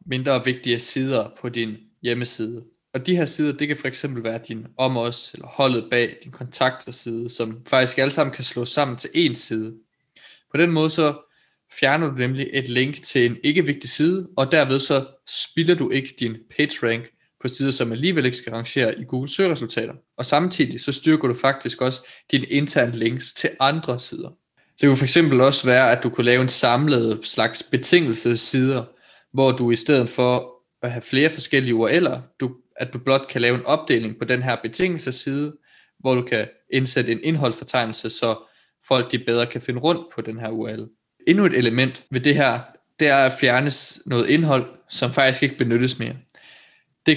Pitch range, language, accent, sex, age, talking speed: 120-140 Hz, Danish, native, male, 20-39, 190 wpm